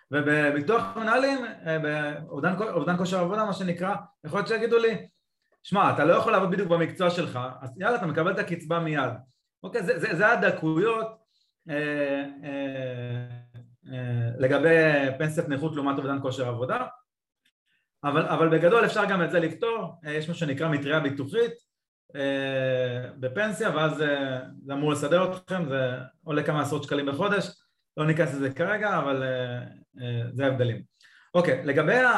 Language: Hebrew